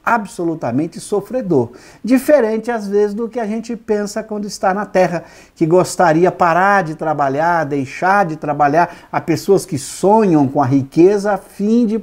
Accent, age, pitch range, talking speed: Brazilian, 50-69, 150-220 Hz, 160 wpm